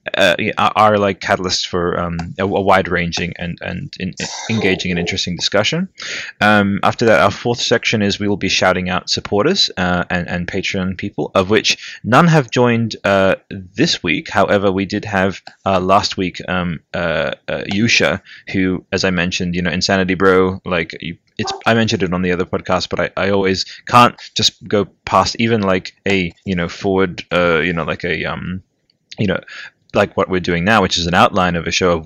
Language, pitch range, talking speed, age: English, 90-100 Hz, 205 wpm, 20-39